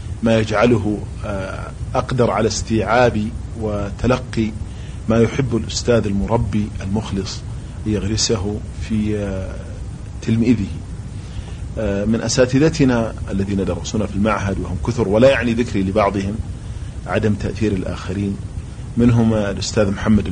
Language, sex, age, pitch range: Arabic, male, 40-59, 95-110 Hz